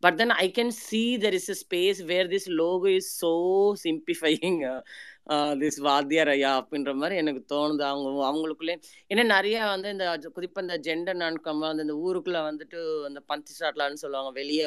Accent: native